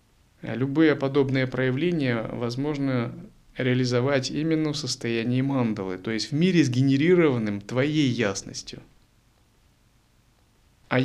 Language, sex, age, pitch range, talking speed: Russian, male, 30-49, 120-145 Hz, 90 wpm